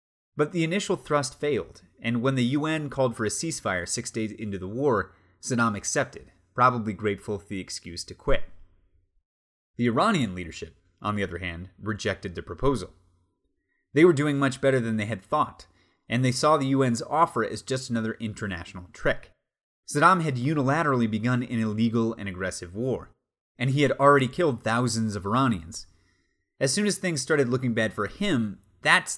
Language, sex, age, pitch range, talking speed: English, male, 30-49, 95-130 Hz, 175 wpm